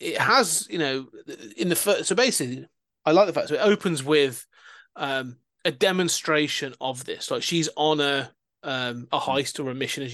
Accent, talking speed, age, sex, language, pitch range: British, 195 wpm, 30-49, male, English, 135-165 Hz